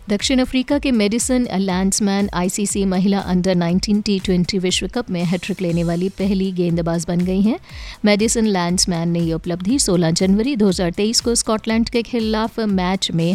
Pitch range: 180-220 Hz